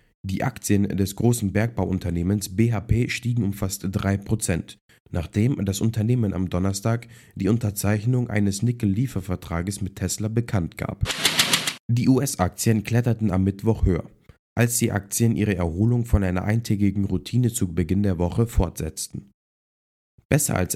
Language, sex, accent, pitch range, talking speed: German, male, German, 95-115 Hz, 130 wpm